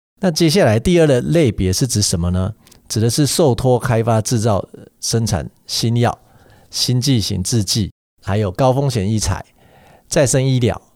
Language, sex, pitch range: Chinese, male, 105-135 Hz